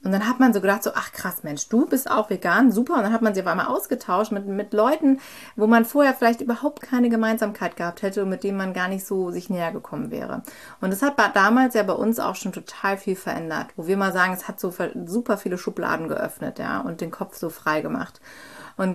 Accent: German